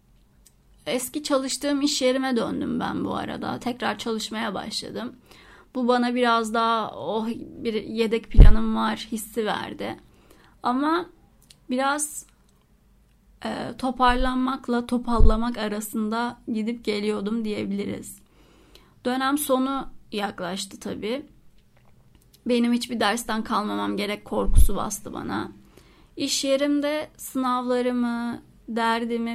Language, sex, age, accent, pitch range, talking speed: Turkish, female, 30-49, native, 220-255 Hz, 95 wpm